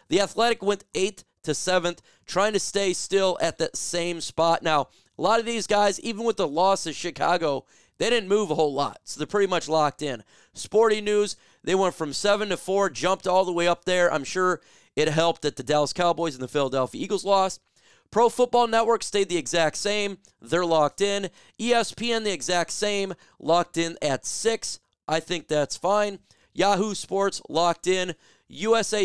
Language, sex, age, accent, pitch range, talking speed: English, male, 30-49, American, 160-205 Hz, 190 wpm